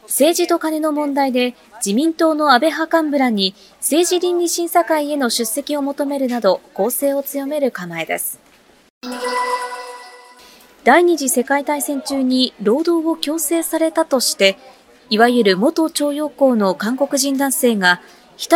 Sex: female